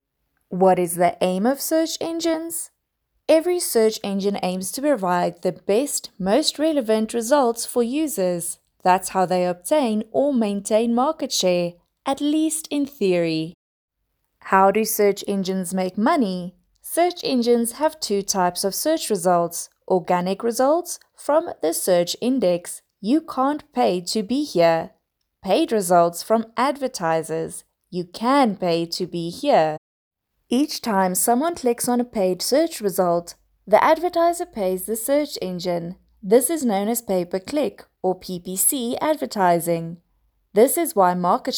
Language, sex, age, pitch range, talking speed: English, female, 20-39, 180-275 Hz, 135 wpm